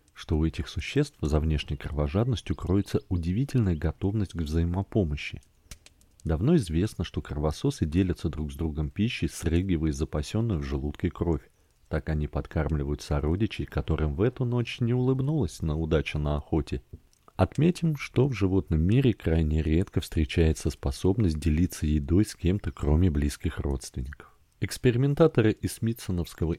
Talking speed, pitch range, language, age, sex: 135 wpm, 80-105 Hz, Russian, 40-59, male